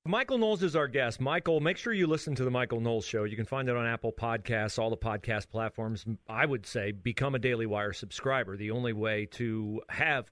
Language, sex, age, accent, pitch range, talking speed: English, male, 40-59, American, 110-140 Hz, 225 wpm